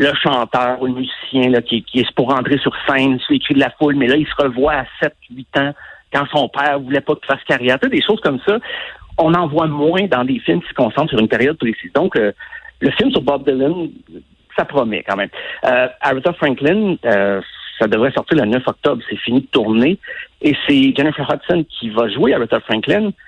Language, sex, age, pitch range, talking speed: French, male, 50-69, 125-175 Hz, 225 wpm